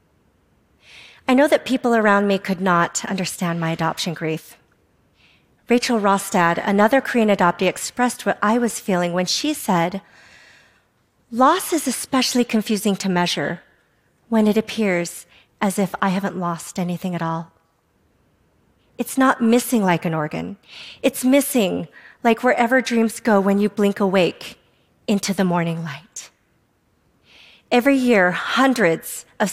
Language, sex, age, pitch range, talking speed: Arabic, female, 40-59, 190-245 Hz, 135 wpm